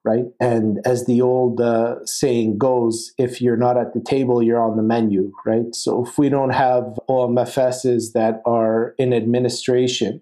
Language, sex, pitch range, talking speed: English, male, 120-135 Hz, 170 wpm